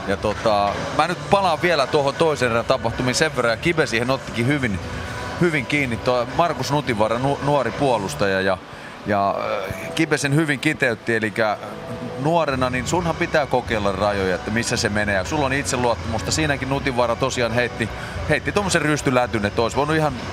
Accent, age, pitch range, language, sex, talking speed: native, 30-49, 105-140 Hz, Finnish, male, 160 wpm